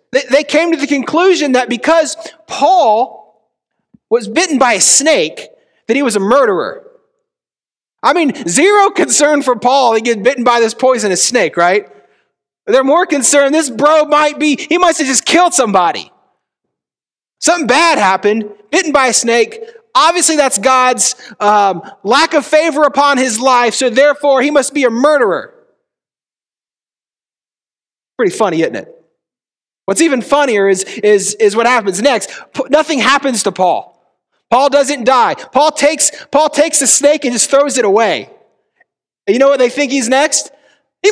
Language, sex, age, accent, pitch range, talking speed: English, male, 30-49, American, 250-315 Hz, 160 wpm